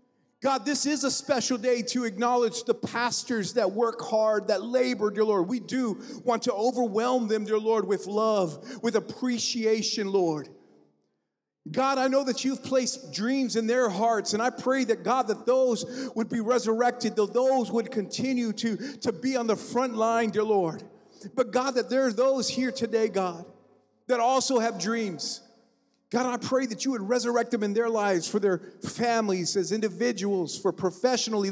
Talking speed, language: 180 wpm, English